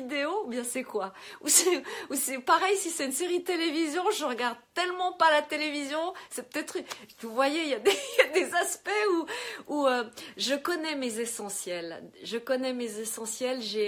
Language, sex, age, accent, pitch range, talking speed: French, female, 40-59, French, 190-255 Hz, 185 wpm